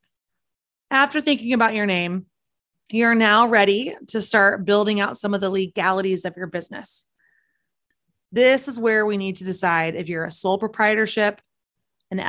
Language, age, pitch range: English, 20-39, 190-230 Hz